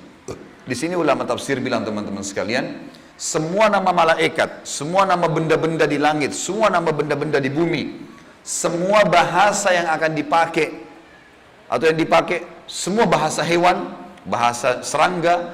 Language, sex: Indonesian, male